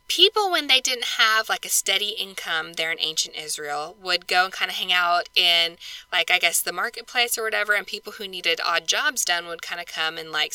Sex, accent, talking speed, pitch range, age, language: female, American, 235 wpm, 175-240 Hz, 20-39, English